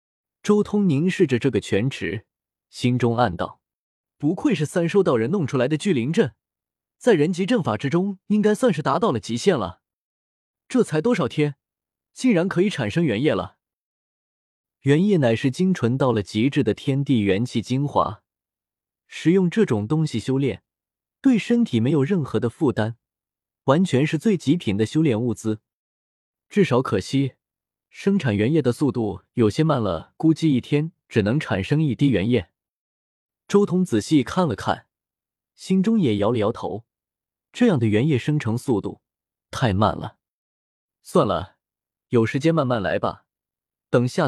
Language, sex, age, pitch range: Chinese, male, 20-39, 115-175 Hz